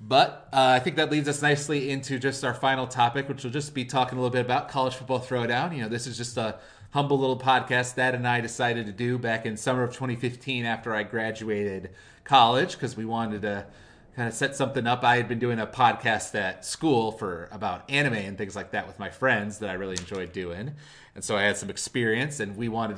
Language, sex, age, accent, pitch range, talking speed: English, male, 30-49, American, 105-125 Hz, 235 wpm